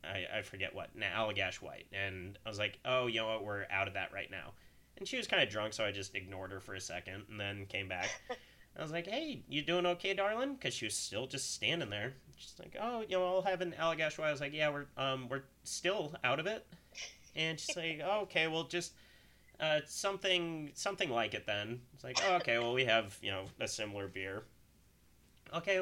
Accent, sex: American, male